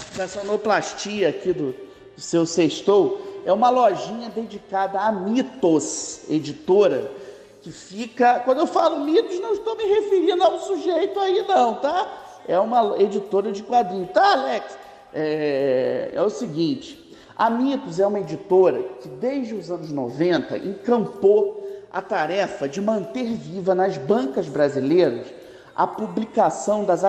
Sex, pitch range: male, 180-245 Hz